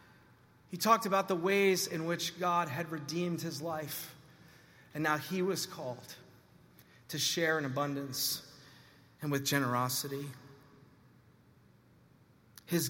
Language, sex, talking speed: English, male, 115 wpm